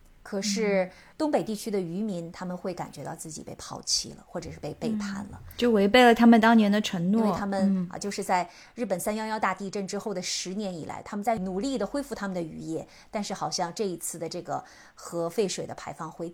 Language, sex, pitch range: Chinese, female, 180-235 Hz